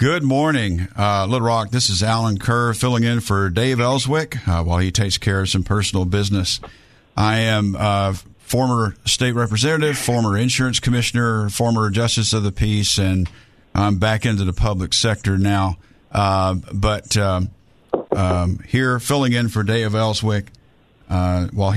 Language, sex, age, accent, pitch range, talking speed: English, male, 50-69, American, 100-125 Hz, 160 wpm